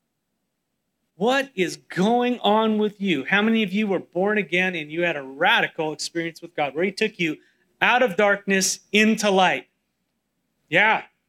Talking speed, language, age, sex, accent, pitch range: 165 wpm, English, 30-49, male, American, 175-220 Hz